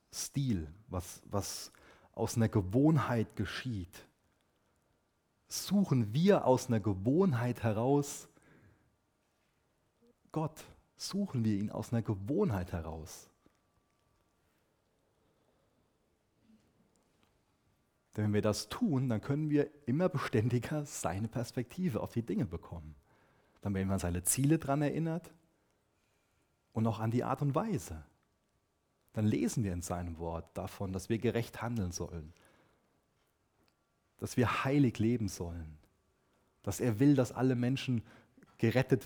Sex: male